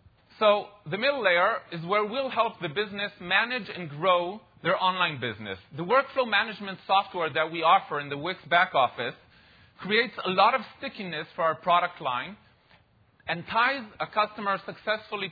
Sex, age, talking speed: male, 40-59, 165 wpm